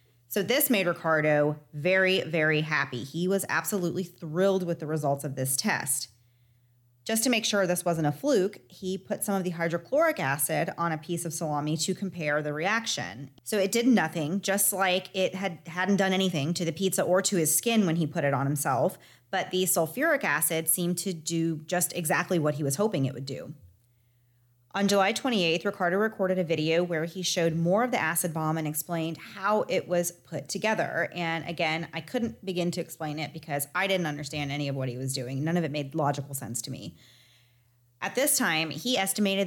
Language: English